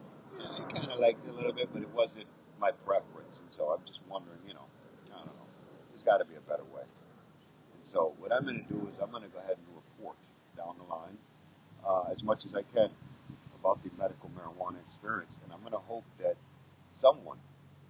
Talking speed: 220 wpm